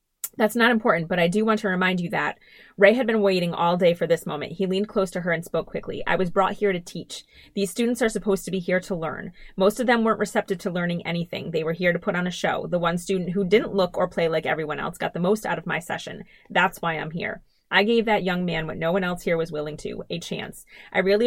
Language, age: English, 30-49